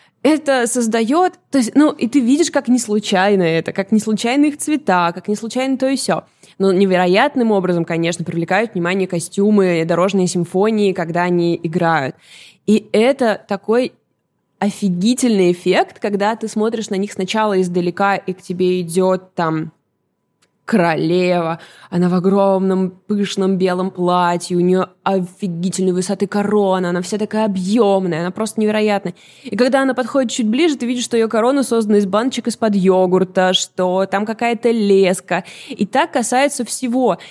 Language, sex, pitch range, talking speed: Russian, female, 185-230 Hz, 155 wpm